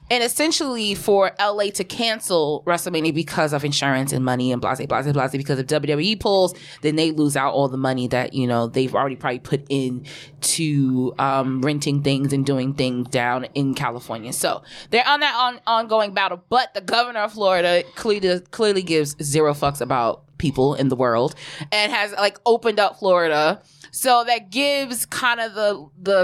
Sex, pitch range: female, 145-210 Hz